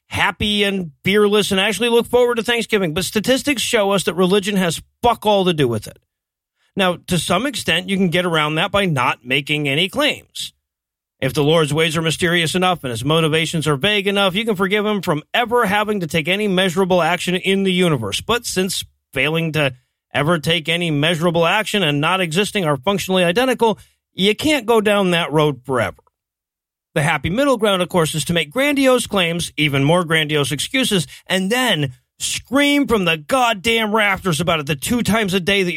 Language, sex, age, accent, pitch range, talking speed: English, male, 40-59, American, 155-210 Hz, 195 wpm